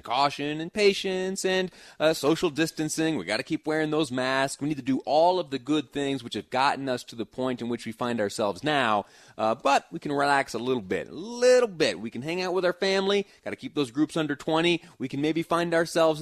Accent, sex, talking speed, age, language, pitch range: American, male, 245 wpm, 30-49, English, 120-155 Hz